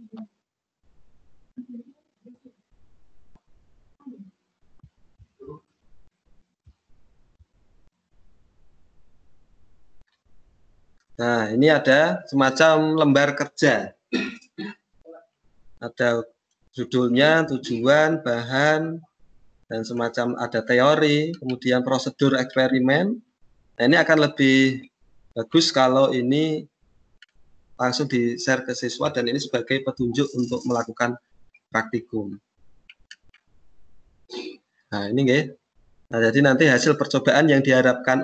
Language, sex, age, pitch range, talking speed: Indonesian, male, 30-49, 115-145 Hz, 70 wpm